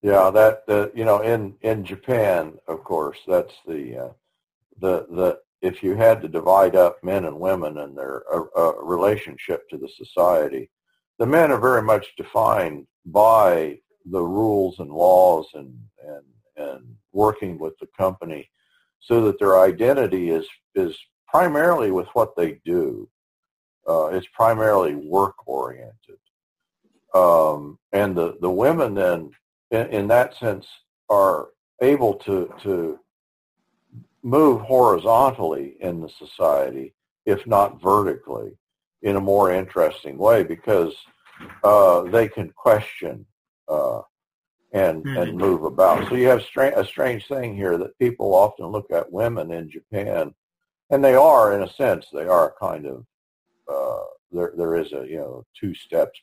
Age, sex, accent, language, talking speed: 50-69, male, American, English, 145 wpm